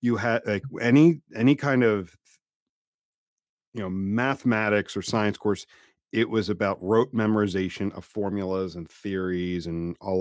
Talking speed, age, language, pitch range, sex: 140 wpm, 40-59, English, 95-125 Hz, male